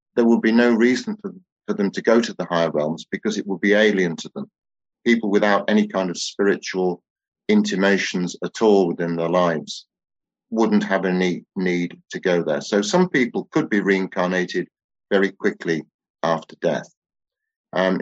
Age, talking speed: 50-69, 170 wpm